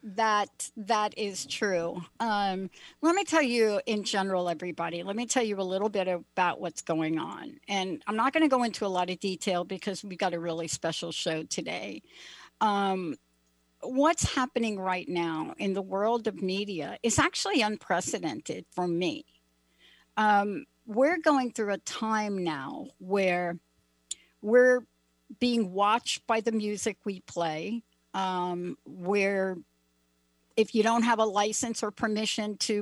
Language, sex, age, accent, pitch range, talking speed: English, female, 60-79, American, 175-230 Hz, 155 wpm